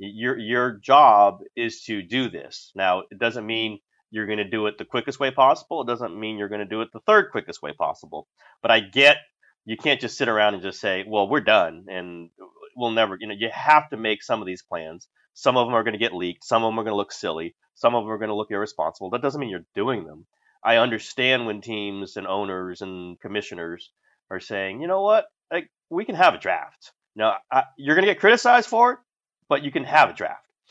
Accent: American